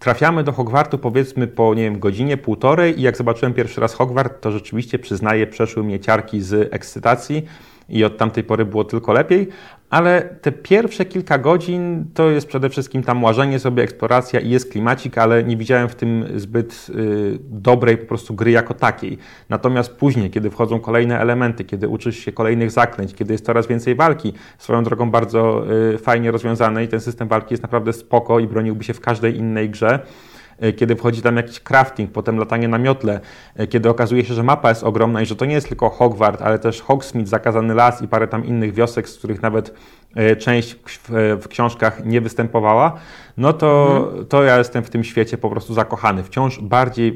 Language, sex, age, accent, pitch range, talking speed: Polish, male, 30-49, native, 110-130 Hz, 190 wpm